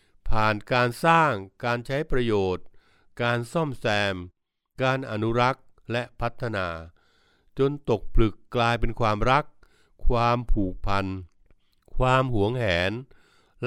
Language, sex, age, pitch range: Thai, male, 60-79, 100-130 Hz